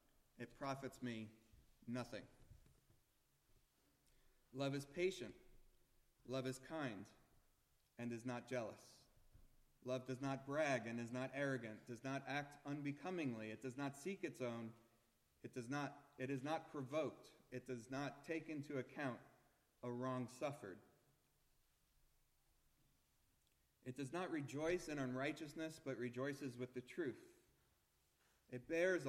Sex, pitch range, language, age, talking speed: male, 120-145 Hz, English, 40-59, 125 wpm